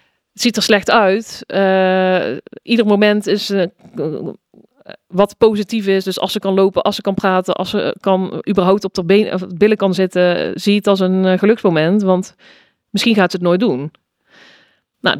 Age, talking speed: 40-59, 195 wpm